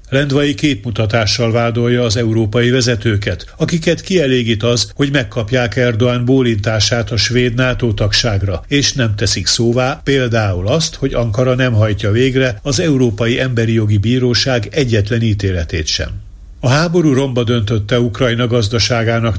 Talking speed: 125 wpm